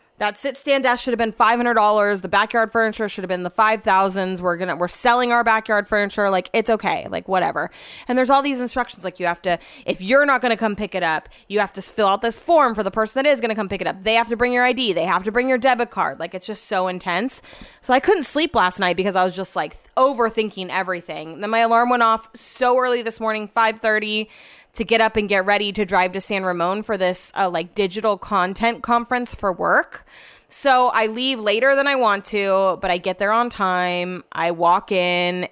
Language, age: English, 20-39